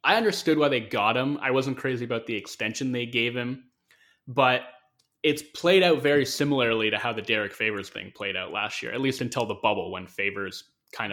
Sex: male